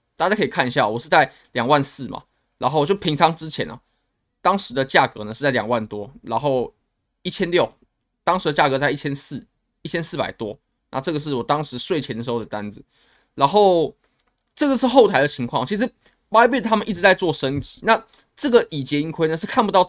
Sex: male